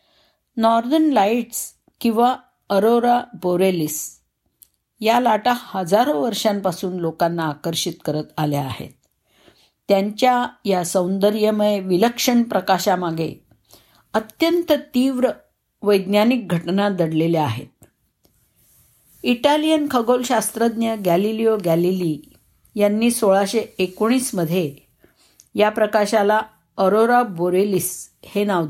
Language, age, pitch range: Marathi, 50-69, 180-230 Hz